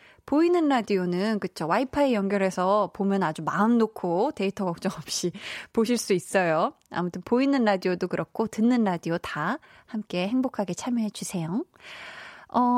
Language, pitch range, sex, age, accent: Korean, 190-250 Hz, female, 20-39, native